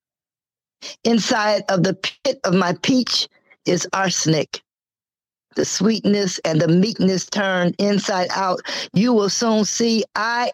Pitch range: 170-210 Hz